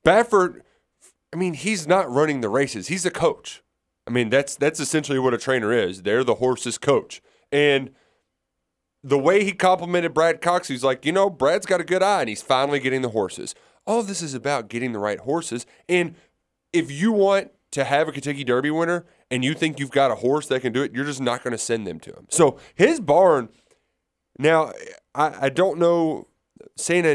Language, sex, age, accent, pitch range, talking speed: English, male, 30-49, American, 110-155 Hz, 210 wpm